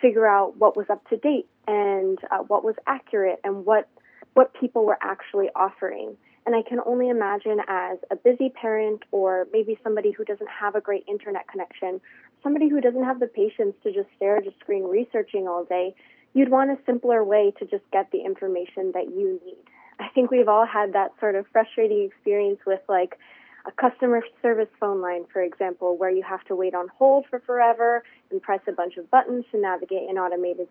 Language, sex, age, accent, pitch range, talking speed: English, female, 20-39, American, 195-260 Hz, 205 wpm